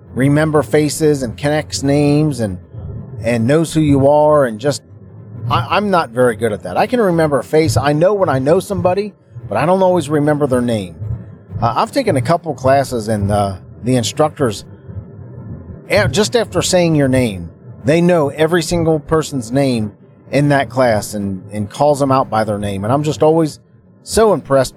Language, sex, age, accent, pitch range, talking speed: English, male, 40-59, American, 110-155 Hz, 185 wpm